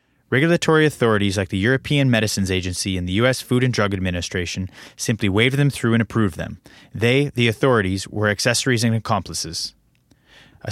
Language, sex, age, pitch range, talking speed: English, male, 20-39, 95-125 Hz, 160 wpm